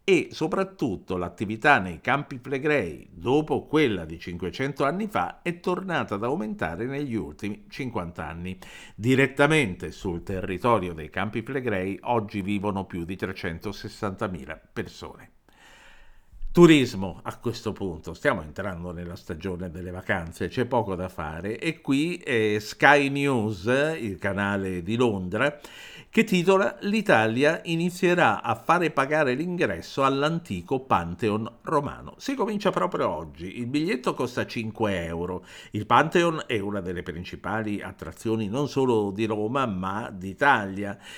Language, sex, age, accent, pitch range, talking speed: Italian, male, 50-69, native, 95-145 Hz, 130 wpm